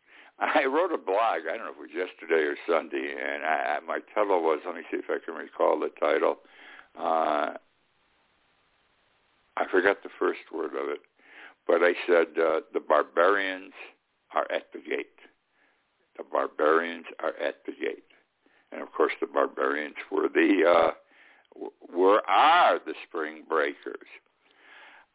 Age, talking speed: 60-79, 150 wpm